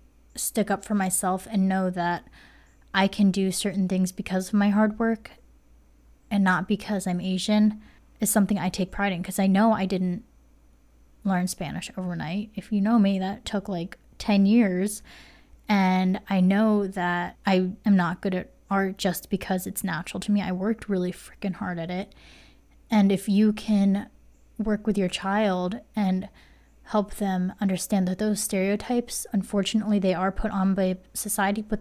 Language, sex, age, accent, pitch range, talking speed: English, female, 20-39, American, 185-205 Hz, 170 wpm